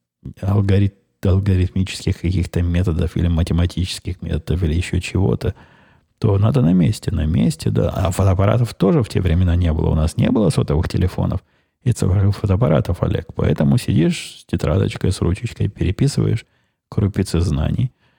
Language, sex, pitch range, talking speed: Russian, male, 85-105 Hz, 145 wpm